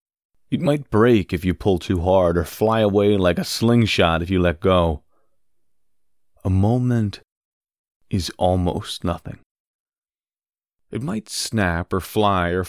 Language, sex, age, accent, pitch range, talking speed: English, male, 30-49, American, 85-115 Hz, 135 wpm